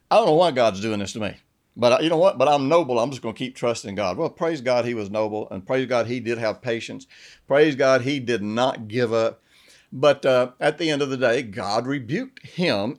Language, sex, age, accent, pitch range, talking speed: English, male, 60-79, American, 115-150 Hz, 245 wpm